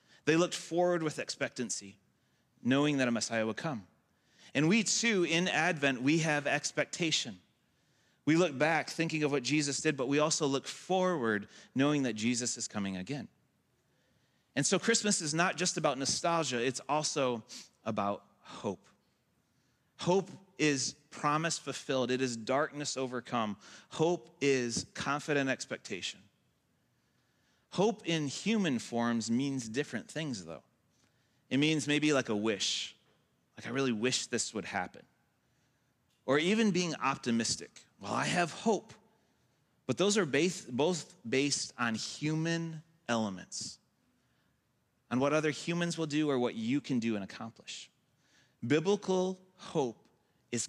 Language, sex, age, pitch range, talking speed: English, male, 30-49, 120-165 Hz, 135 wpm